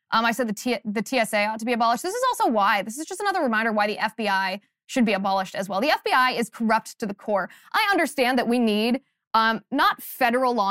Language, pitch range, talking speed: English, 215-285 Hz, 240 wpm